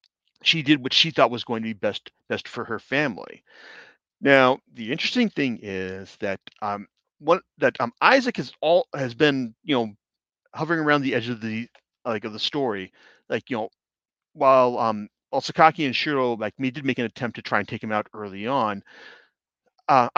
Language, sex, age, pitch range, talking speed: English, male, 40-59, 105-140 Hz, 190 wpm